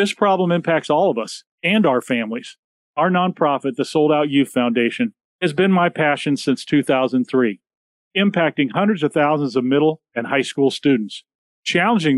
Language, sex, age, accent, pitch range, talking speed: English, male, 40-59, American, 130-170 Hz, 165 wpm